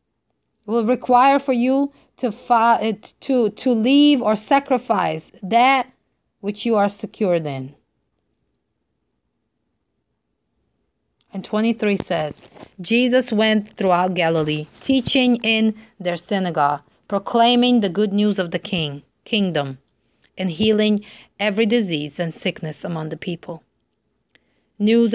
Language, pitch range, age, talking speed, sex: English, 180-230 Hz, 30-49, 105 wpm, female